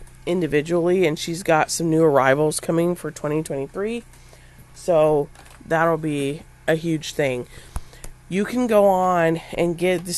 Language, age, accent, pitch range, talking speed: English, 30-49, American, 140-175 Hz, 135 wpm